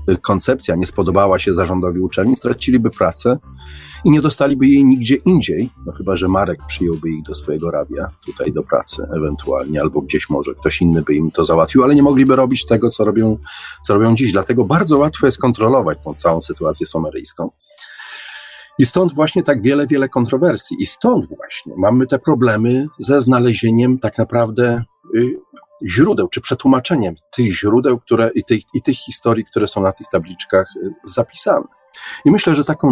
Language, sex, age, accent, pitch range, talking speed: Polish, male, 40-59, native, 95-135 Hz, 160 wpm